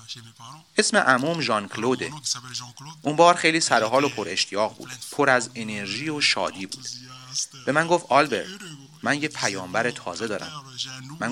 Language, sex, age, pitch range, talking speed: Persian, male, 30-49, 120-155 Hz, 150 wpm